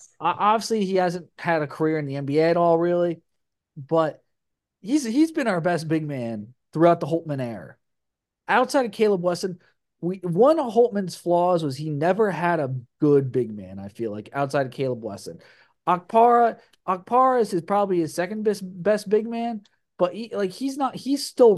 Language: English